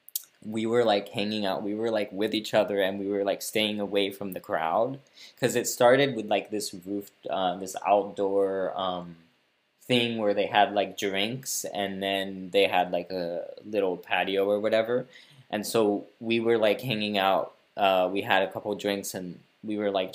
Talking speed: 190 wpm